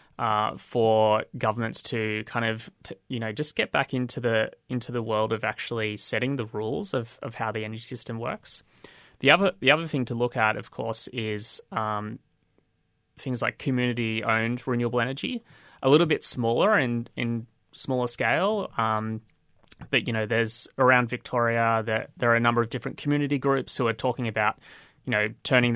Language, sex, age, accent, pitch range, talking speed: English, male, 20-39, Australian, 110-130 Hz, 185 wpm